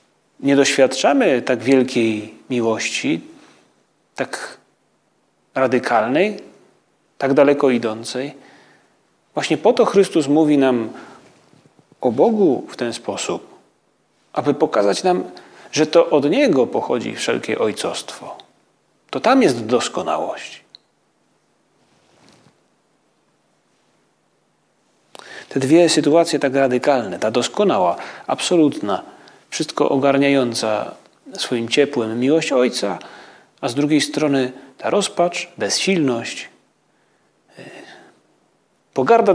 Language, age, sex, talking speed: Polish, 40-59, male, 85 wpm